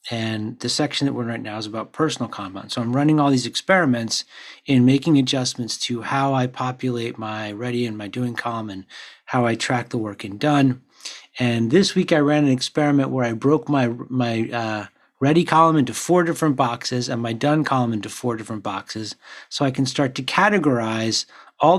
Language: English